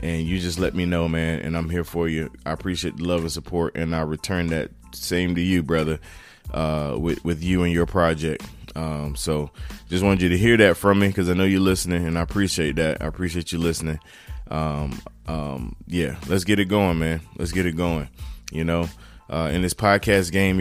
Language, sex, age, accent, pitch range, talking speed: English, male, 20-39, American, 80-95 Hz, 220 wpm